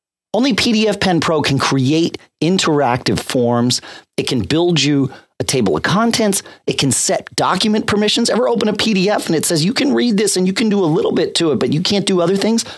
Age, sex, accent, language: 40-59, male, American, English